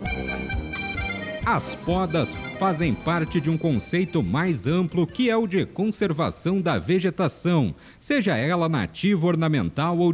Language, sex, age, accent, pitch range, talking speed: Portuguese, male, 50-69, Brazilian, 160-185 Hz, 125 wpm